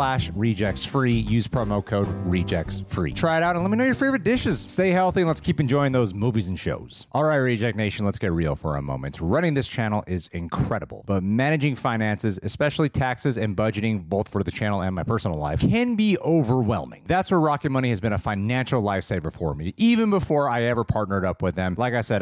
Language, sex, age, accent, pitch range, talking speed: English, male, 30-49, American, 100-150 Hz, 225 wpm